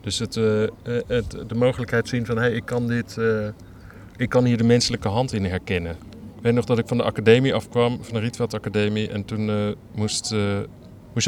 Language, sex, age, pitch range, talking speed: Dutch, male, 40-59, 100-115 Hz, 170 wpm